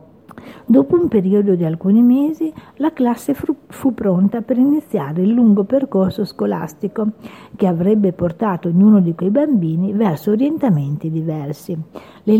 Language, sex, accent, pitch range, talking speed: Italian, female, native, 180-245 Hz, 135 wpm